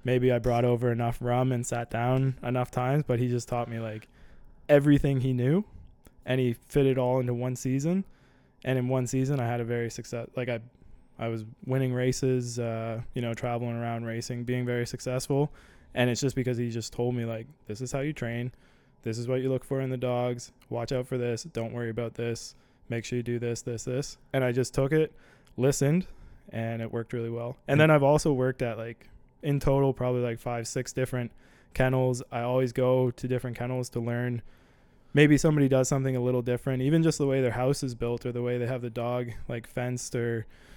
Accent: American